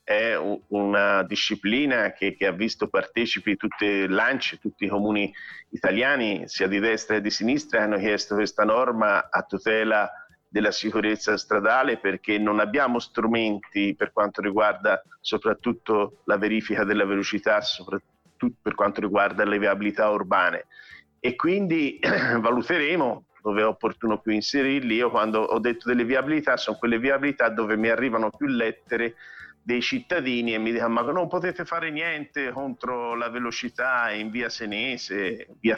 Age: 50-69